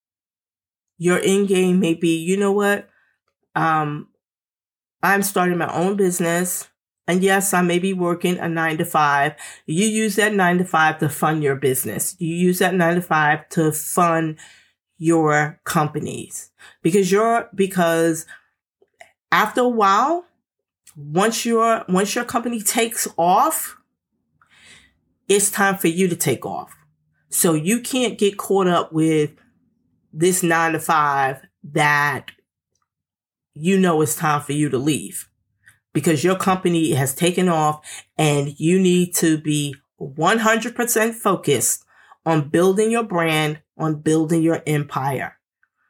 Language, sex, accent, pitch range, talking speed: English, female, American, 155-200 Hz, 135 wpm